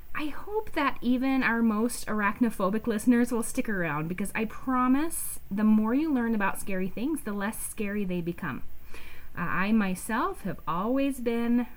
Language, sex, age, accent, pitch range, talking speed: English, female, 30-49, American, 165-230 Hz, 165 wpm